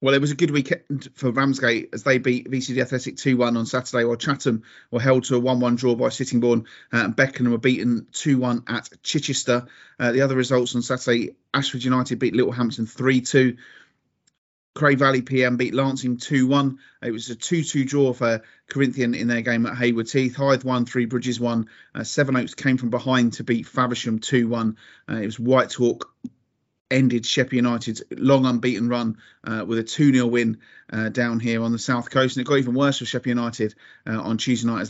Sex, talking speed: male, 210 wpm